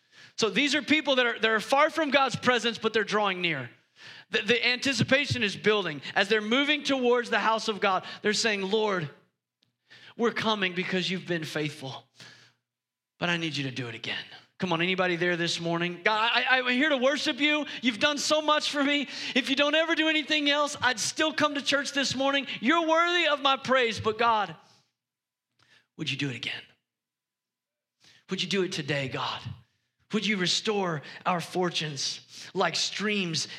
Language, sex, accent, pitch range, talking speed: English, male, American, 175-270 Hz, 180 wpm